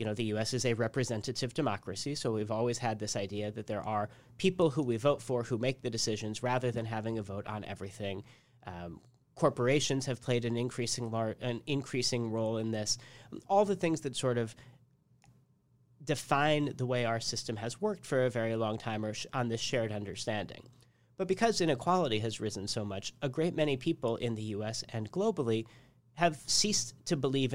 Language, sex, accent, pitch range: English, male, American, 115-140 Hz